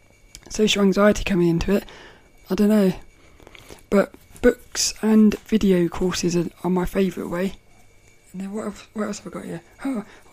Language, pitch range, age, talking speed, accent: English, 180-225 Hz, 20-39, 170 wpm, British